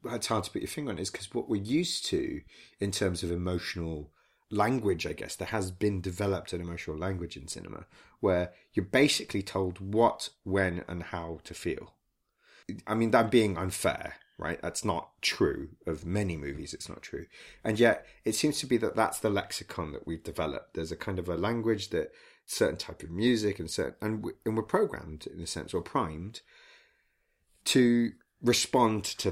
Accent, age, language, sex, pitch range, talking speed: British, 30-49, English, male, 90-115 Hz, 185 wpm